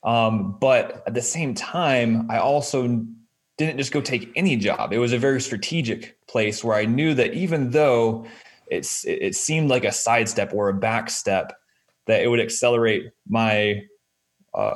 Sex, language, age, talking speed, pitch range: male, English, 20-39, 165 wpm, 110-130 Hz